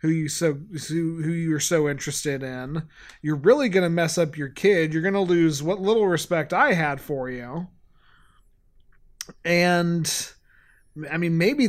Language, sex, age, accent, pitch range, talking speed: English, male, 30-49, American, 155-180 Hz, 160 wpm